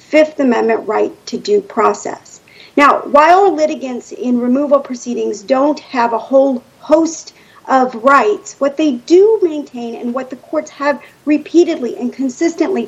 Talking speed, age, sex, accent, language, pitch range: 145 wpm, 50-69, female, American, English, 240-315 Hz